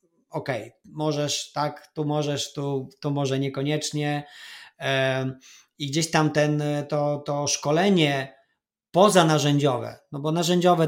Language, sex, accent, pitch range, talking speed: Polish, male, native, 130-155 Hz, 110 wpm